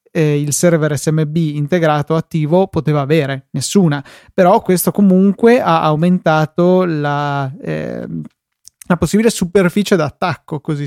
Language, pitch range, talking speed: Italian, 150-175 Hz, 115 wpm